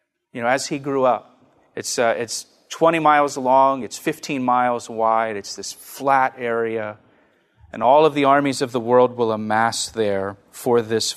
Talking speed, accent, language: 175 wpm, American, English